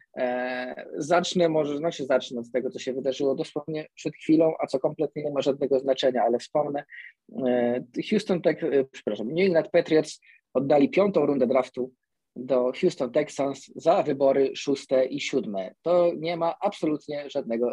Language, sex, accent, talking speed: Polish, male, native, 150 wpm